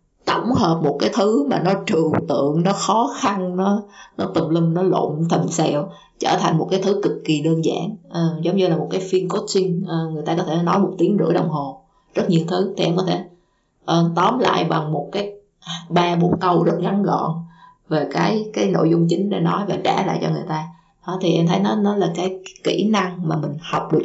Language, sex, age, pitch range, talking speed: Vietnamese, female, 20-39, 165-190 Hz, 235 wpm